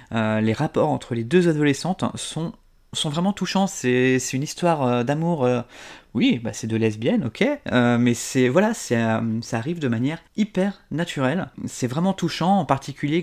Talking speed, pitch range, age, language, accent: 170 wpm, 120-170 Hz, 20-39, French, French